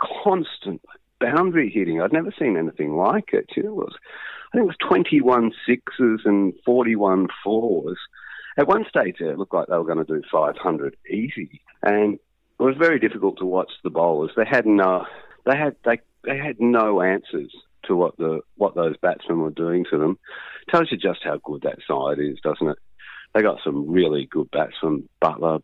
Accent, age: Australian, 50-69